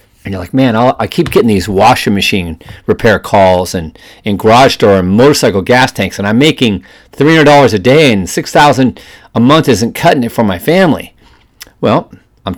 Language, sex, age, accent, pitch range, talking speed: English, male, 40-59, American, 115-160 Hz, 185 wpm